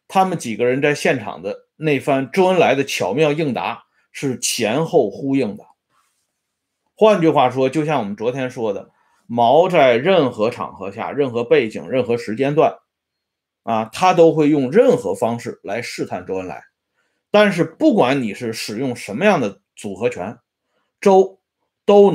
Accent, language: Chinese, Swedish